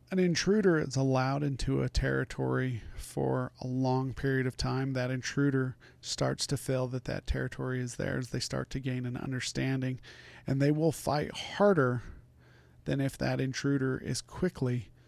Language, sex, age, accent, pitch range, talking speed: English, male, 40-59, American, 120-135 Hz, 160 wpm